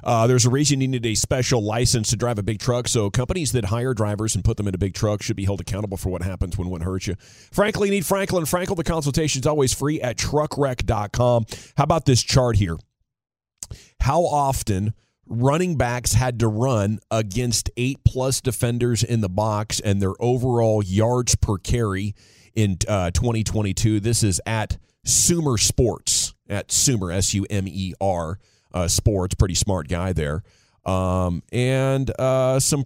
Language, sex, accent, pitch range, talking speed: English, male, American, 100-130 Hz, 170 wpm